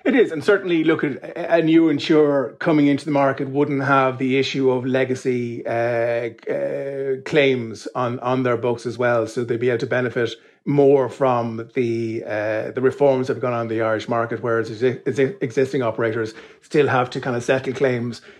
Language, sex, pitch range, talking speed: English, male, 115-135 Hz, 195 wpm